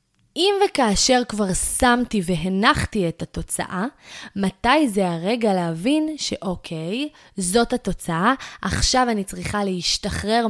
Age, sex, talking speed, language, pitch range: 20-39, female, 105 wpm, Hebrew, 180-230 Hz